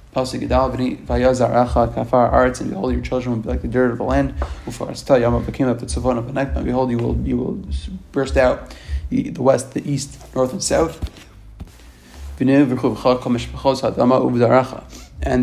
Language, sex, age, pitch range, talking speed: English, male, 30-49, 80-130 Hz, 110 wpm